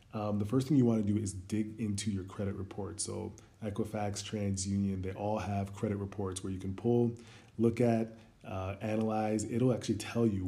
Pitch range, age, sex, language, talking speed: 95-110 Hz, 20-39, male, English, 195 wpm